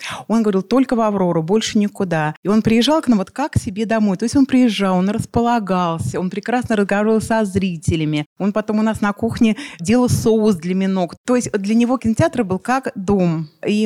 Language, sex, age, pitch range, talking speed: Russian, female, 30-49, 175-220 Hz, 205 wpm